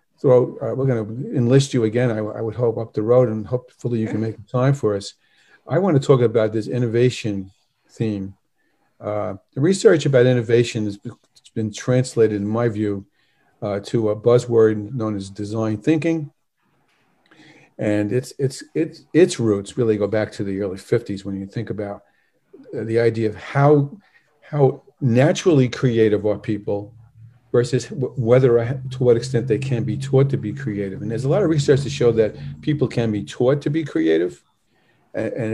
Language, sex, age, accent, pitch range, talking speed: English, male, 50-69, American, 105-130 Hz, 180 wpm